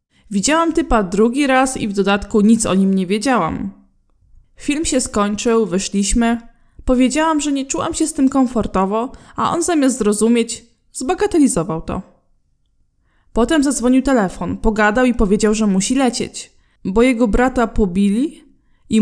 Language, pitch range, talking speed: Polish, 205-255 Hz, 140 wpm